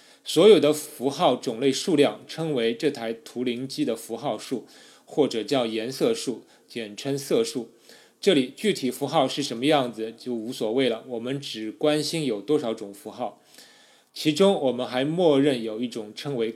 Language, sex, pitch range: Chinese, male, 115-145 Hz